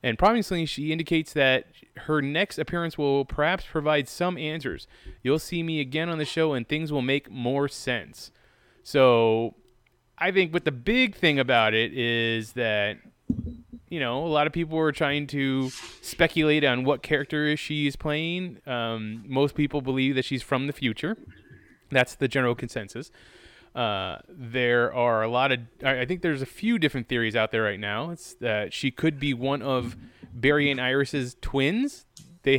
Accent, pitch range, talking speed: American, 120-155 Hz, 175 wpm